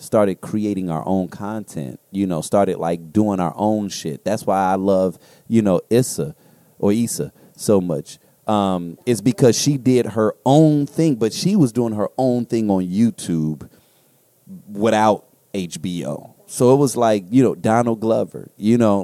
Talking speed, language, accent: 165 wpm, English, American